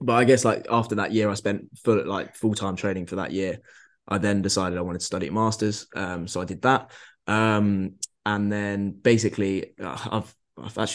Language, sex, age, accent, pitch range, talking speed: English, male, 20-39, British, 95-105 Hz, 195 wpm